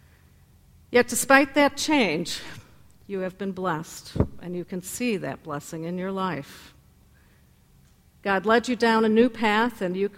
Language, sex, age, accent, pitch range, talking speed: English, female, 50-69, American, 165-210 Hz, 155 wpm